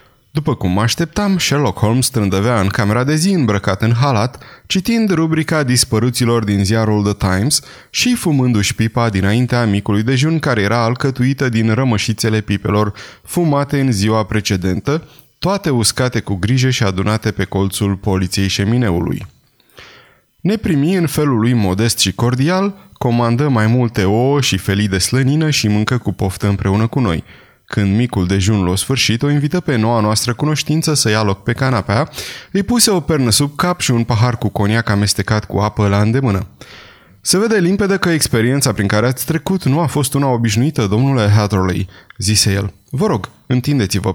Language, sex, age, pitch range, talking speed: Romanian, male, 20-39, 105-140 Hz, 165 wpm